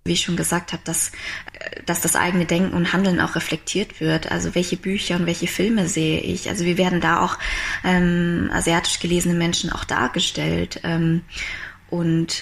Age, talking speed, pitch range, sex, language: 20-39, 175 wpm, 170-195 Hz, female, German